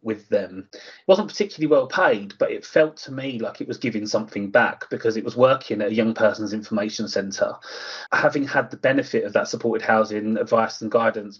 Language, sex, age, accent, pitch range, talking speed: English, male, 30-49, British, 110-145 Hz, 205 wpm